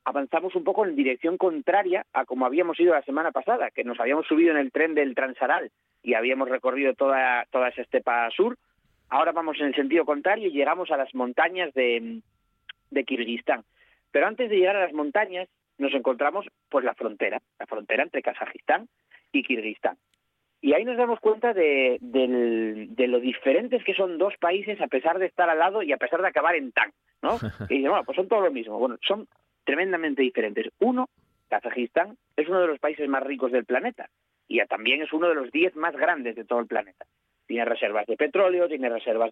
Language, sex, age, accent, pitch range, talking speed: Spanish, male, 40-59, Spanish, 125-185 Hz, 200 wpm